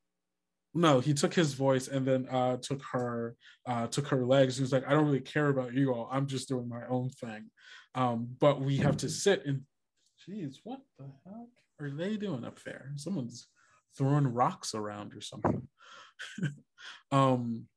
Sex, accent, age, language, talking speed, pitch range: male, American, 20-39, English, 180 wpm, 115-145 Hz